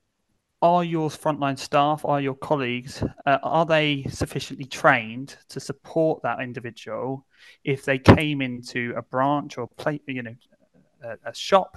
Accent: British